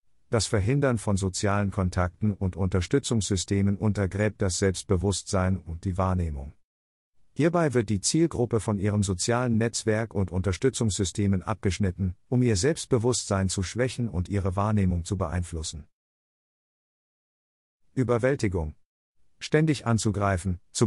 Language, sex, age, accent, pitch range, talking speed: German, male, 50-69, German, 95-120 Hz, 110 wpm